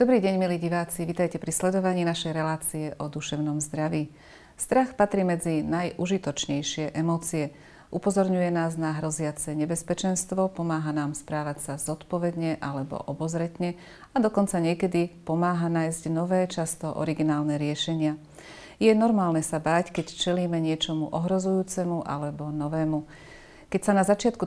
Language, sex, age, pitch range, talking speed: Slovak, female, 30-49, 155-185 Hz, 130 wpm